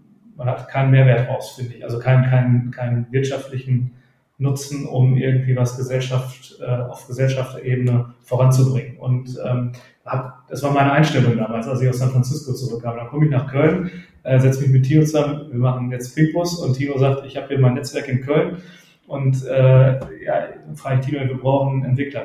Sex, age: male, 30-49